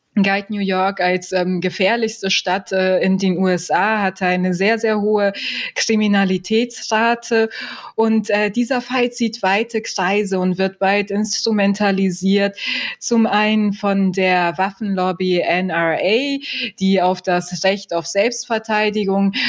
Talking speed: 125 wpm